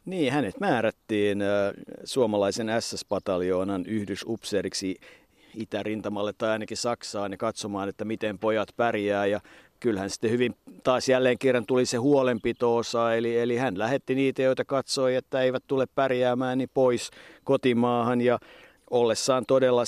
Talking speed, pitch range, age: 135 wpm, 110-130 Hz, 50-69